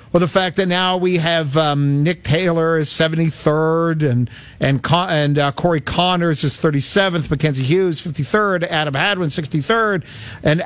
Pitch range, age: 150-195 Hz, 50-69